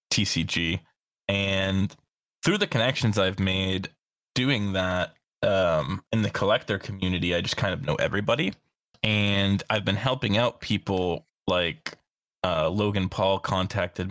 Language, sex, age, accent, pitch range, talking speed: English, male, 20-39, American, 95-110 Hz, 130 wpm